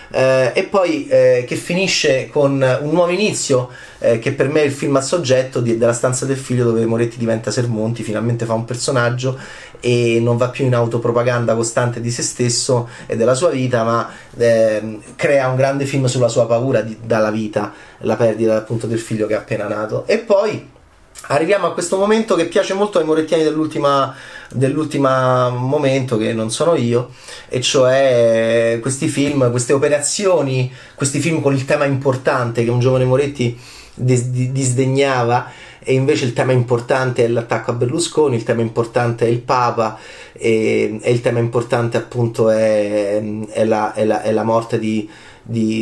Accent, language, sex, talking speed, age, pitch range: native, Italian, male, 175 wpm, 30-49, 115-140 Hz